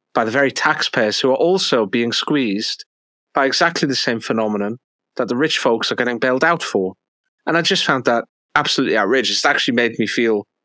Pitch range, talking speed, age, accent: 105-150 Hz, 195 wpm, 40-59, British